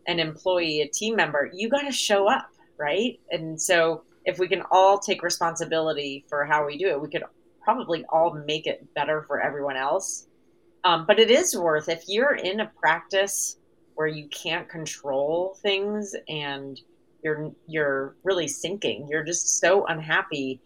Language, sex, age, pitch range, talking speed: English, female, 30-49, 150-200 Hz, 170 wpm